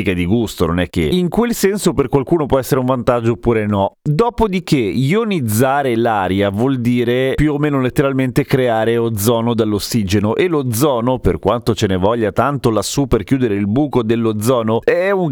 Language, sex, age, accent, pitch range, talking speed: Italian, male, 30-49, native, 115-145 Hz, 175 wpm